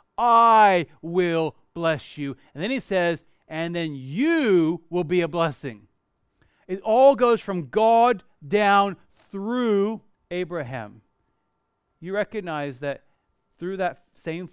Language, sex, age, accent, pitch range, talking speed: English, male, 30-49, American, 170-215 Hz, 120 wpm